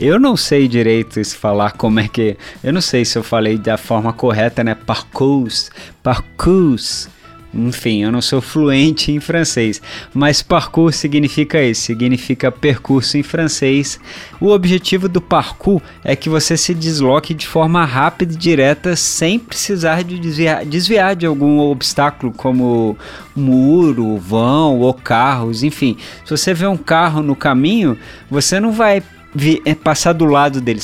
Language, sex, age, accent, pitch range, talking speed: Portuguese, male, 20-39, Brazilian, 125-170 Hz, 155 wpm